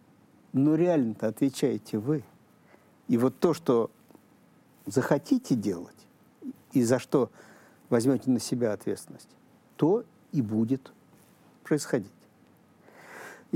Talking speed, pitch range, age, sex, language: 95 wpm, 115-150 Hz, 50-69, male, Russian